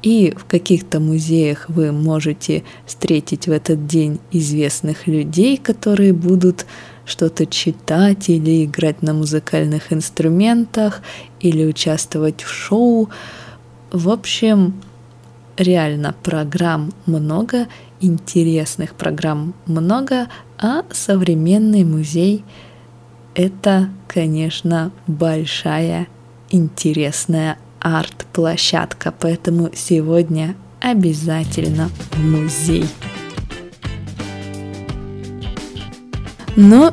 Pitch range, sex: 155-185 Hz, female